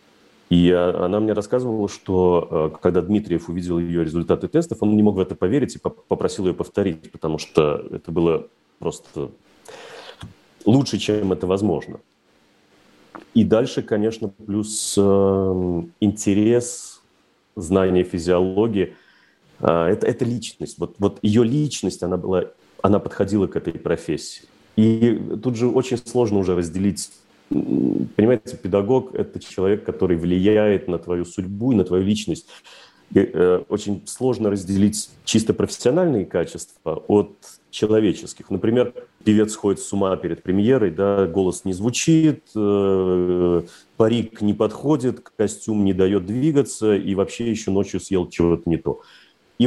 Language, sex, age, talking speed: Russian, male, 30-49, 130 wpm